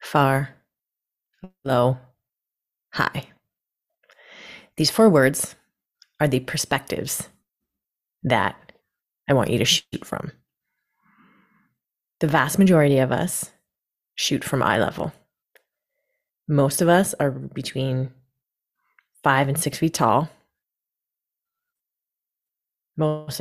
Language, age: English, 30-49